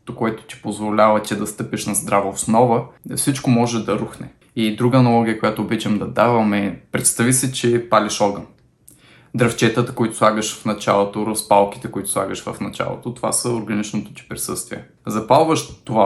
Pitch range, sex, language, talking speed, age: 100-120 Hz, male, Bulgarian, 160 wpm, 20-39